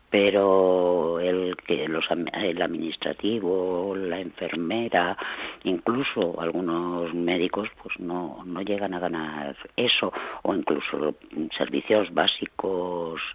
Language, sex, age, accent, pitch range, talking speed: Spanish, female, 50-69, Spanish, 95-135 Hz, 95 wpm